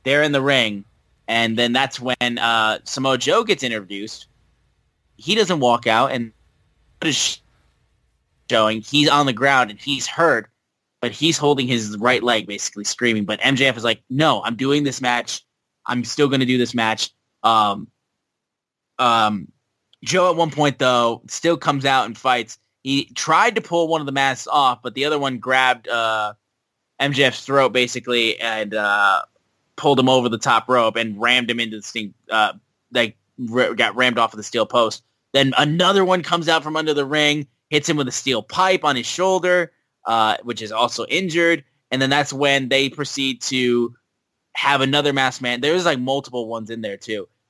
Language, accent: English, American